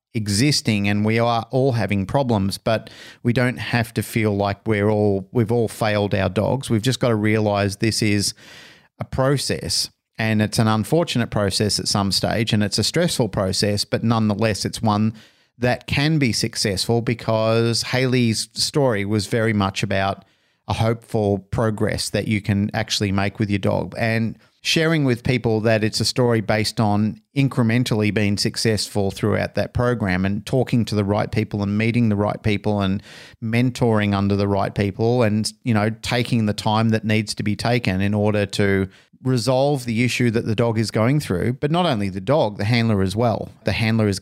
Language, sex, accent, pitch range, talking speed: English, male, Australian, 105-120 Hz, 185 wpm